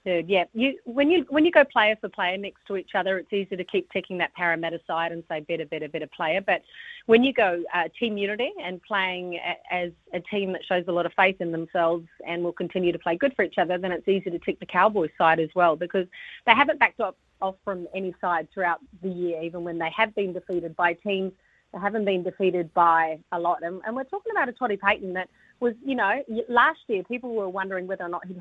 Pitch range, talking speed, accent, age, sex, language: 175-210 Hz, 245 wpm, Australian, 30-49, female, English